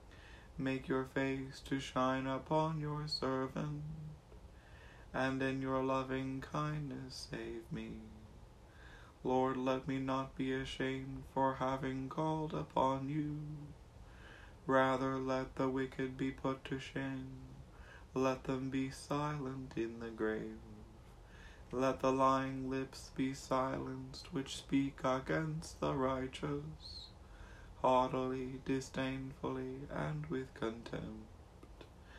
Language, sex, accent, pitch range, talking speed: English, male, American, 115-135 Hz, 105 wpm